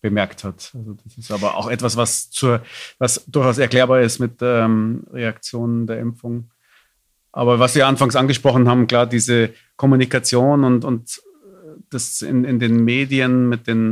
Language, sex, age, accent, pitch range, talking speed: German, male, 40-59, German, 115-130 Hz, 165 wpm